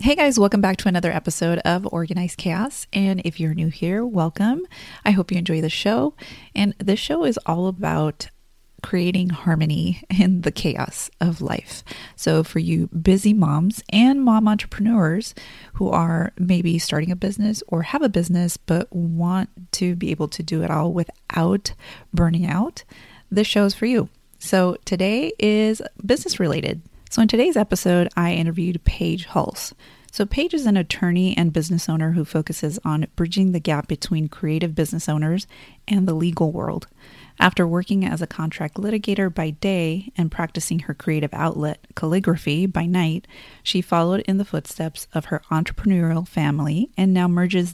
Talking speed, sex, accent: 165 wpm, female, American